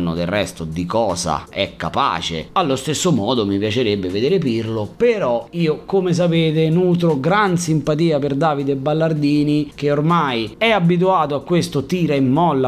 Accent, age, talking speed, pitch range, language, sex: native, 30-49, 150 wpm, 105-170 Hz, Italian, male